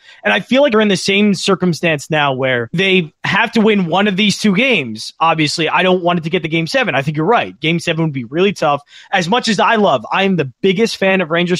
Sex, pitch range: male, 160-200 Hz